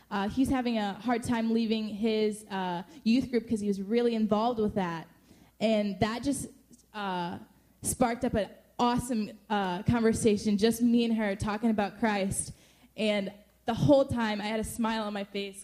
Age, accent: 10-29, American